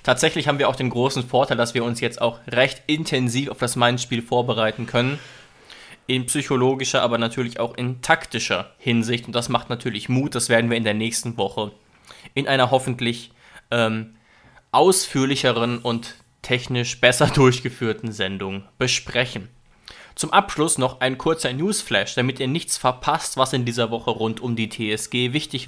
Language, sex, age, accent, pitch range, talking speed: German, male, 20-39, German, 115-130 Hz, 160 wpm